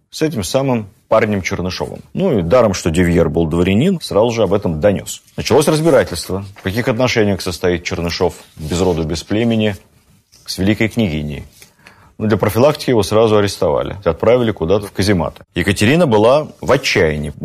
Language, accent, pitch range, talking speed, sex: Russian, native, 90-115 Hz, 160 wpm, male